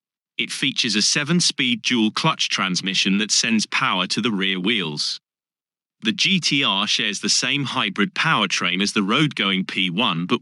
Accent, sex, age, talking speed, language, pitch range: British, male, 30-49, 160 wpm, English, 100-145 Hz